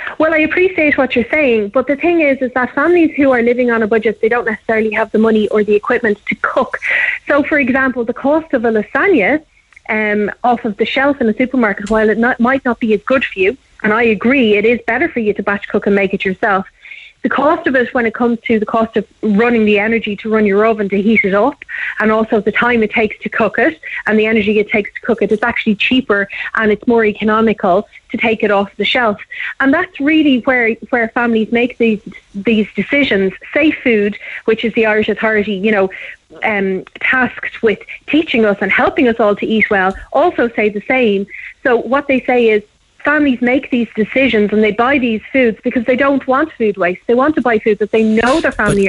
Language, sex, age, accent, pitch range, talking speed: English, female, 30-49, Irish, 215-265 Hz, 230 wpm